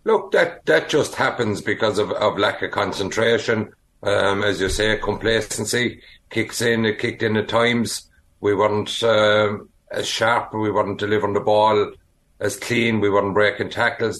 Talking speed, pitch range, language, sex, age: 165 wpm, 105-120 Hz, English, male, 60-79